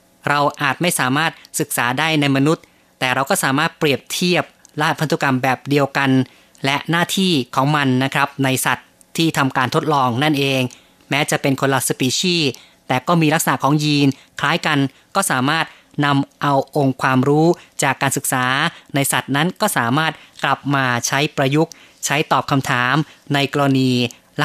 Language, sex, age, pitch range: Thai, female, 30-49, 130-155 Hz